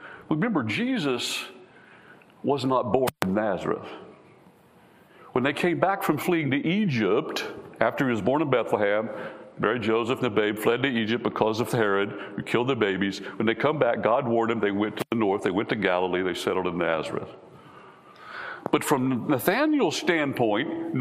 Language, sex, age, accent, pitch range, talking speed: English, male, 60-79, American, 130-215 Hz, 170 wpm